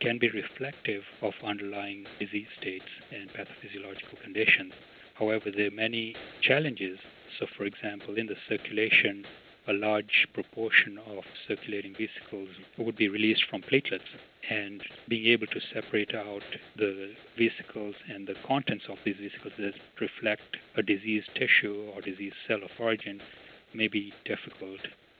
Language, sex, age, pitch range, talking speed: English, male, 60-79, 100-105 Hz, 140 wpm